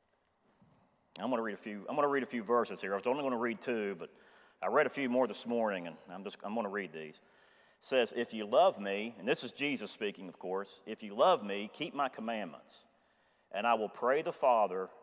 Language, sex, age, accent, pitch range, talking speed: English, male, 40-59, American, 105-135 Hz, 250 wpm